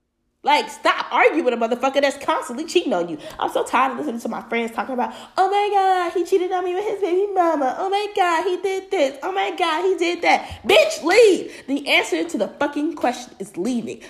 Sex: female